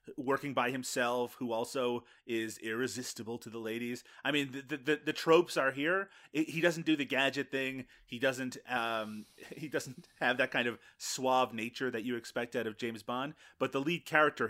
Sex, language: male, English